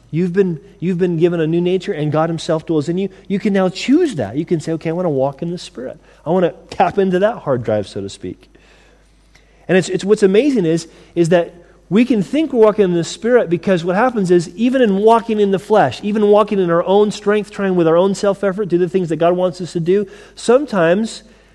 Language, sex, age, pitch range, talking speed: English, male, 30-49, 130-185 Hz, 245 wpm